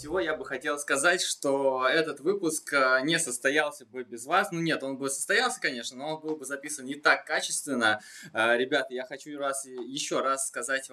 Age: 20-39